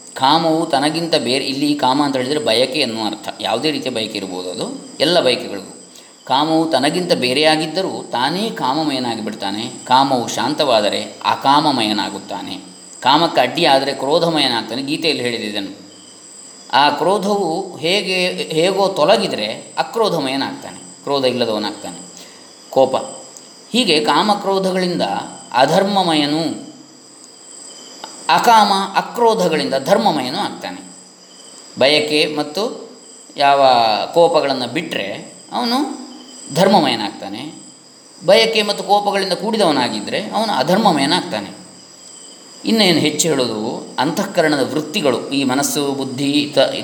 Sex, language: male, Kannada